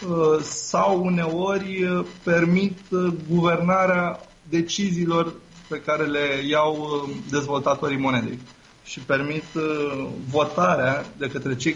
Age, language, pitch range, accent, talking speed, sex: 20-39, Romanian, 145-190 Hz, native, 85 wpm, male